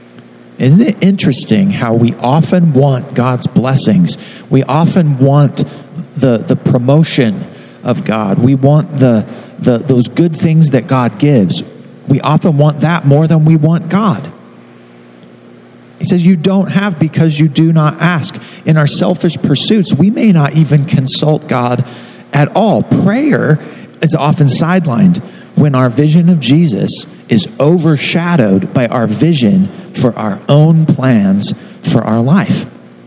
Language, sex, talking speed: English, male, 145 wpm